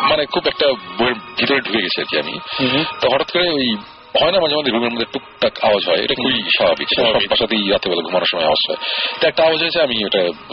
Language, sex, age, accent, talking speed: Bengali, male, 40-59, native, 165 wpm